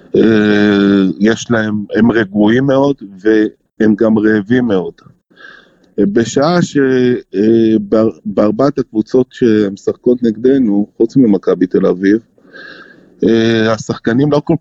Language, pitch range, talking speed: Hebrew, 105-125 Hz, 90 wpm